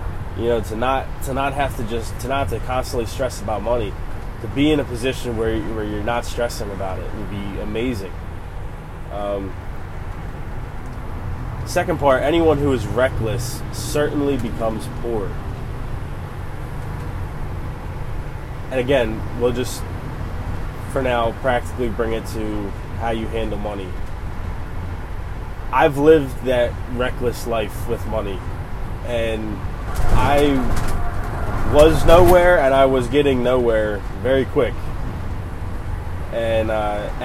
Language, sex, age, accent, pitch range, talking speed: English, male, 20-39, American, 95-125 Hz, 120 wpm